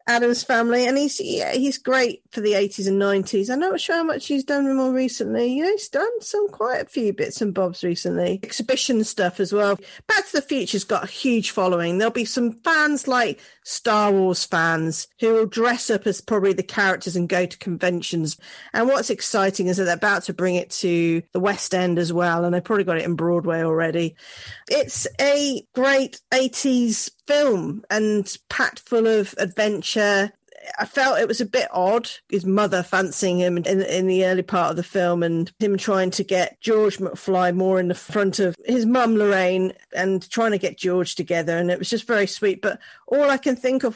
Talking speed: 205 wpm